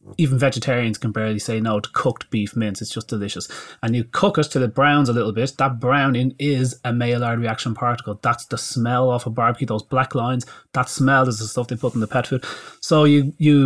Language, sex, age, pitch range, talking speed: English, male, 30-49, 120-150 Hz, 235 wpm